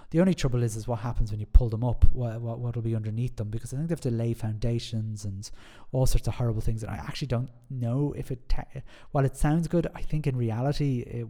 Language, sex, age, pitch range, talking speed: English, male, 30-49, 110-130 Hz, 265 wpm